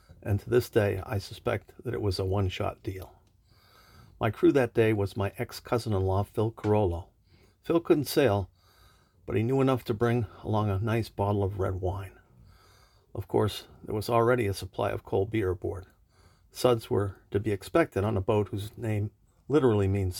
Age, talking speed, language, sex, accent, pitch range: 50-69, 180 wpm, English, male, American, 95-120 Hz